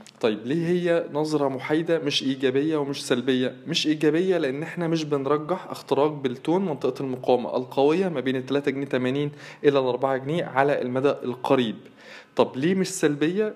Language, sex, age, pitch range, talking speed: Arabic, male, 20-39, 130-155 Hz, 155 wpm